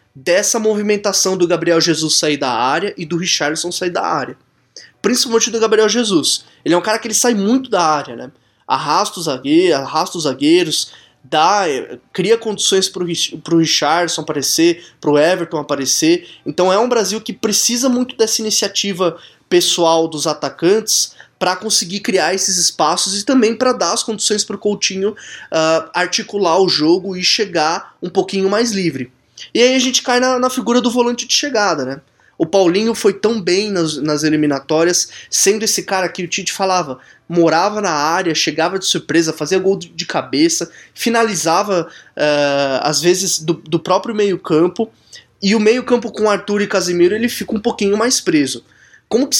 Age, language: 20-39, Portuguese